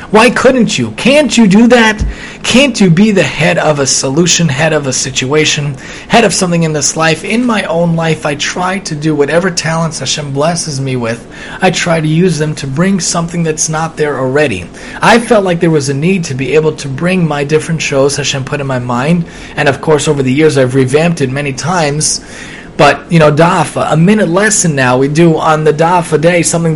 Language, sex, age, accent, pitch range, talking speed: English, male, 30-49, American, 145-200 Hz, 220 wpm